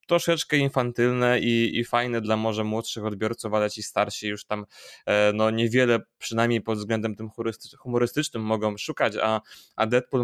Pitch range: 110-120 Hz